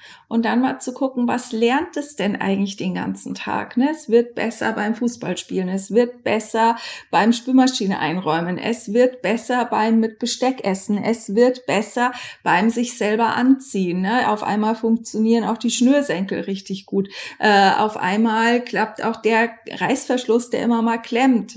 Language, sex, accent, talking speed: German, female, German, 165 wpm